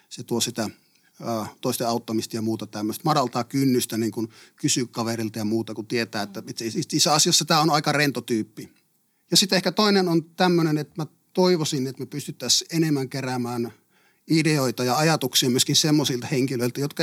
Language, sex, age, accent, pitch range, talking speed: Finnish, male, 30-49, native, 125-170 Hz, 170 wpm